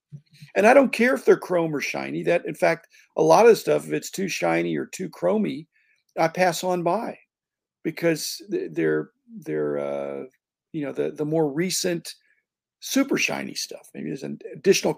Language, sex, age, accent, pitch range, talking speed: English, male, 50-69, American, 135-215 Hz, 180 wpm